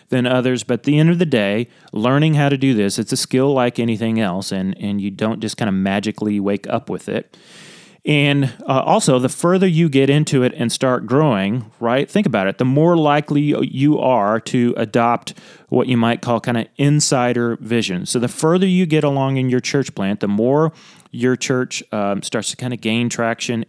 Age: 30-49